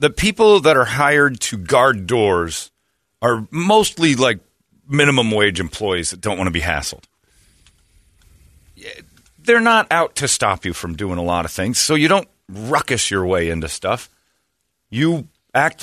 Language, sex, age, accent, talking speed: English, male, 40-59, American, 160 wpm